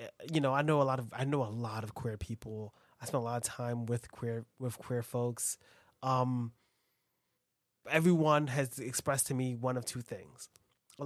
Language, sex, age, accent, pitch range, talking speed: English, male, 20-39, American, 120-145 Hz, 195 wpm